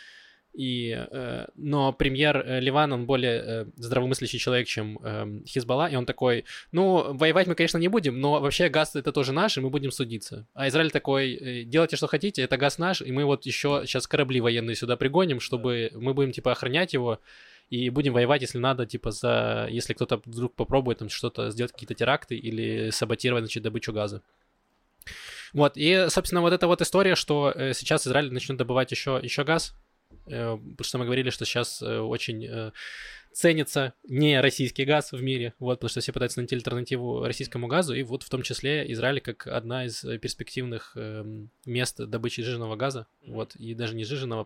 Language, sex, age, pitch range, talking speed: Russian, male, 20-39, 115-145 Hz, 175 wpm